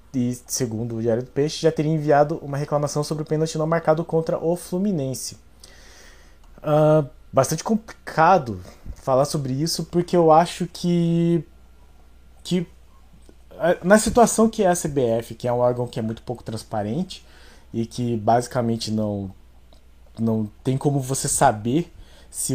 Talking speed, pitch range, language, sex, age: 145 wpm, 110-165 Hz, Portuguese, male, 20-39